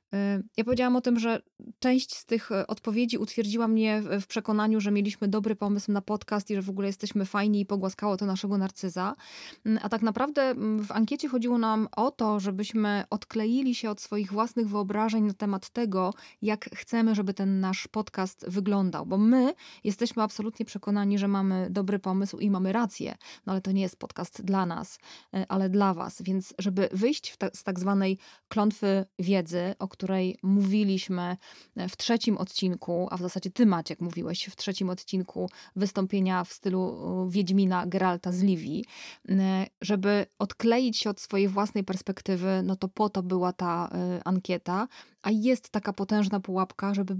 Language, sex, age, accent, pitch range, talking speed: Polish, female, 20-39, native, 190-215 Hz, 165 wpm